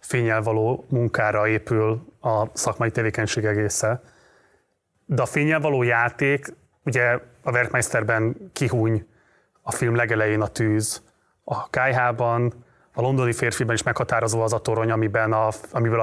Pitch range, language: 115-130 Hz, Hungarian